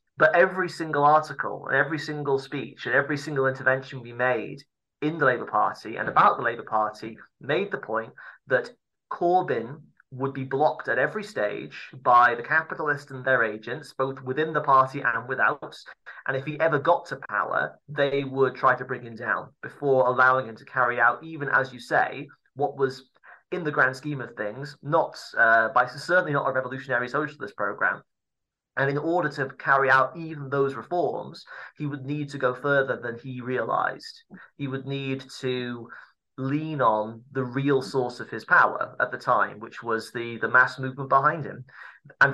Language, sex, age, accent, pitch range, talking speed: English, male, 30-49, British, 125-145 Hz, 185 wpm